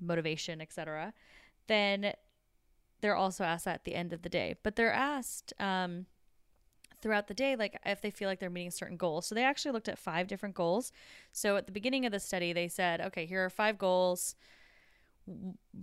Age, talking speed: 10-29, 200 wpm